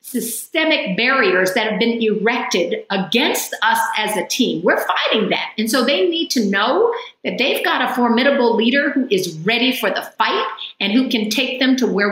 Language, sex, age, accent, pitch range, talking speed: English, female, 50-69, American, 205-255 Hz, 195 wpm